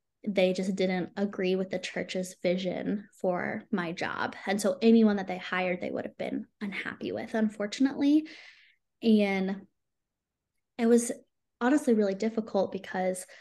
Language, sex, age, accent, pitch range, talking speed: English, female, 10-29, American, 190-225 Hz, 140 wpm